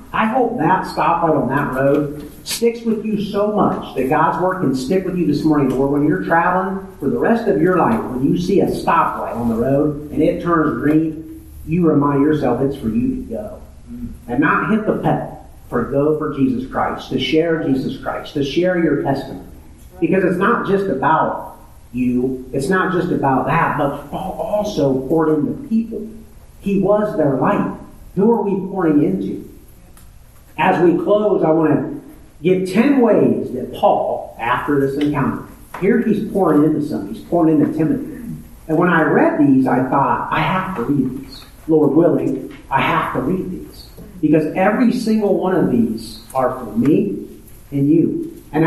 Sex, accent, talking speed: male, American, 180 wpm